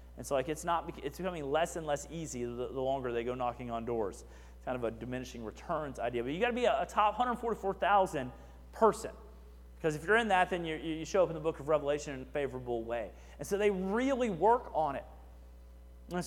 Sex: male